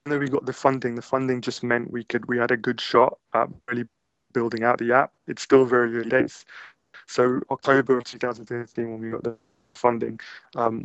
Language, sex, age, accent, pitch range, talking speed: English, male, 20-39, British, 115-125 Hz, 205 wpm